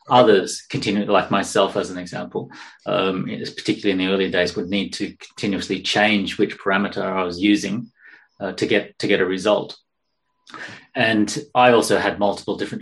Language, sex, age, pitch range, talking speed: English, male, 30-49, 95-110 Hz, 170 wpm